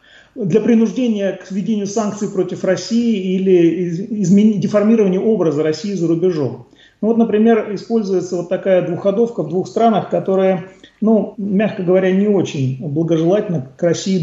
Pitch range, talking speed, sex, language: 175-220 Hz, 145 wpm, male, Russian